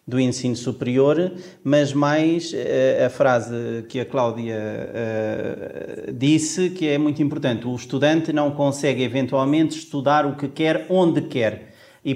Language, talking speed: Portuguese, 145 wpm